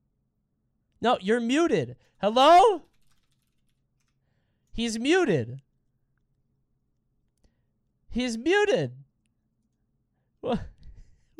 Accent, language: American, English